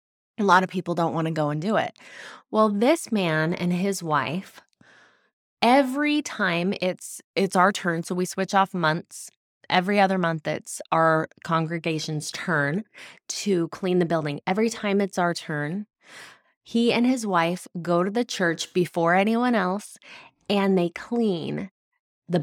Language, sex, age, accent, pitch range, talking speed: English, female, 20-39, American, 165-200 Hz, 160 wpm